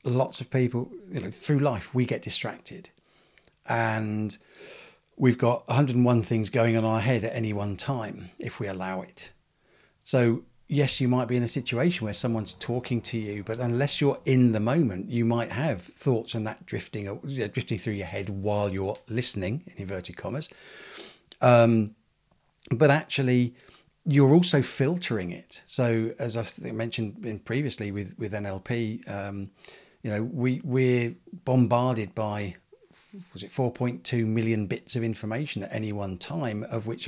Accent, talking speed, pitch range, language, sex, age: British, 160 wpm, 105-125 Hz, English, male, 40-59